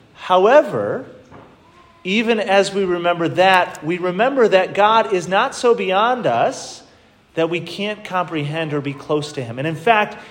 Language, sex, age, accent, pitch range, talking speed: English, male, 30-49, American, 170-225 Hz, 155 wpm